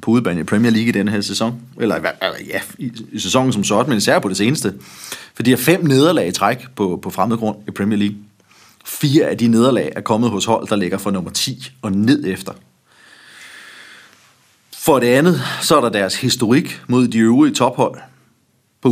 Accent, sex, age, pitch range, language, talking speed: native, male, 30-49, 105-140 Hz, Danish, 210 wpm